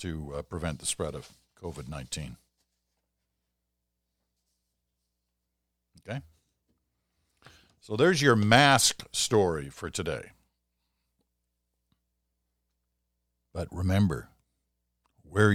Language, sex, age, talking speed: English, male, 60-79, 65 wpm